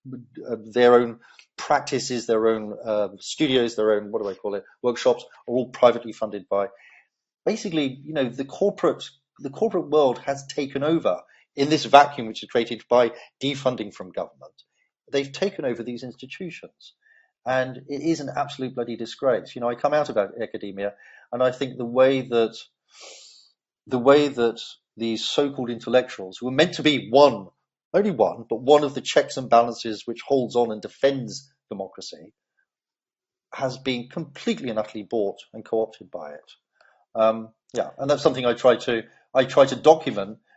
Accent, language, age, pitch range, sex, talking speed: British, English, 40-59, 110-140 Hz, male, 170 wpm